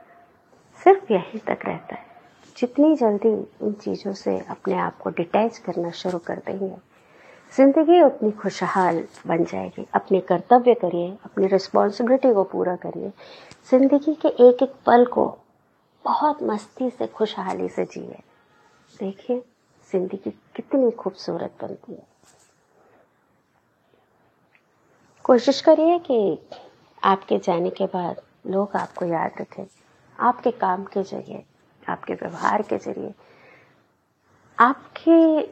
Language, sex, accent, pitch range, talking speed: Hindi, female, native, 190-270 Hz, 115 wpm